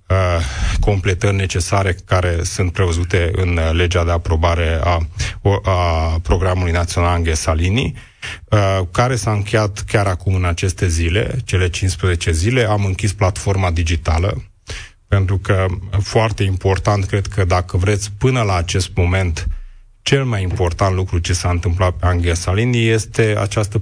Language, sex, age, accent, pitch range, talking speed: Romanian, male, 30-49, native, 90-105 Hz, 140 wpm